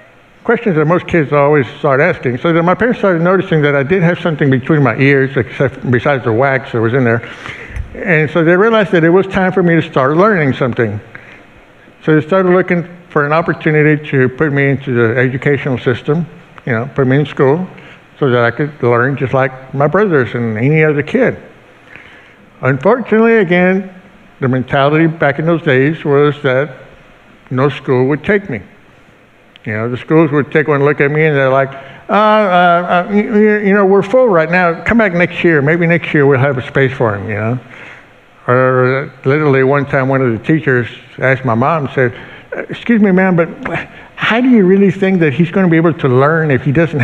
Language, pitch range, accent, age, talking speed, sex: English, 130-170 Hz, American, 60-79, 205 wpm, male